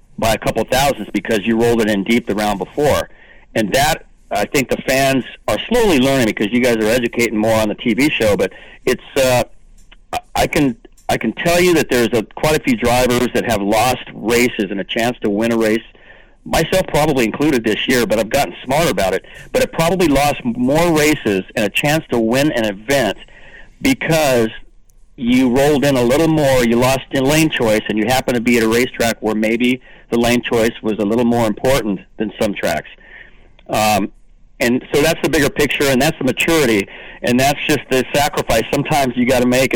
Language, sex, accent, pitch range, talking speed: English, male, American, 115-135 Hz, 210 wpm